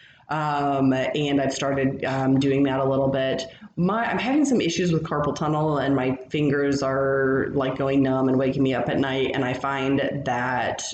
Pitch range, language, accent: 130-145 Hz, English, American